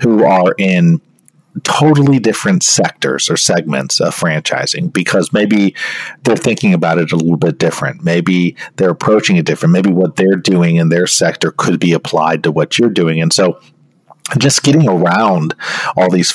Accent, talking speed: American, 170 wpm